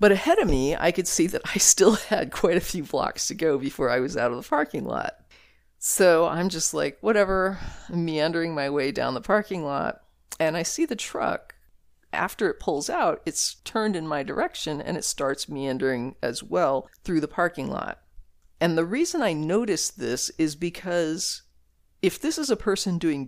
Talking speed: 195 wpm